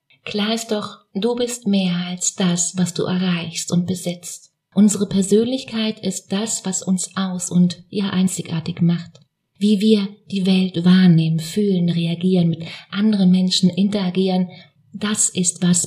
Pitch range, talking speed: 175-205 Hz, 150 wpm